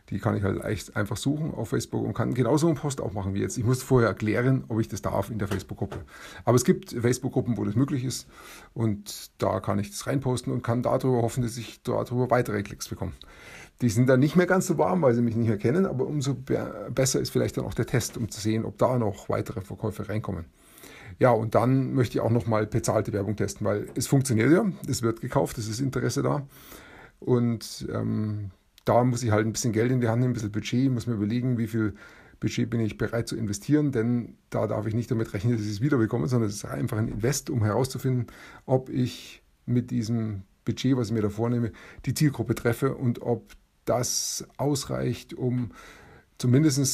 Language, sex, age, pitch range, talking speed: German, male, 30-49, 110-130 Hz, 220 wpm